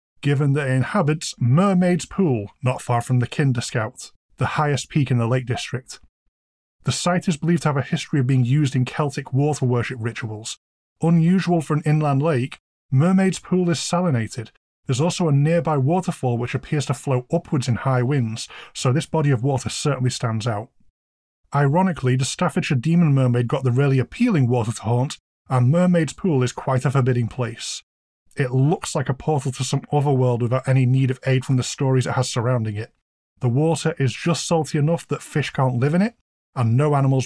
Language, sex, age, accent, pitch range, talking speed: English, male, 20-39, British, 125-150 Hz, 195 wpm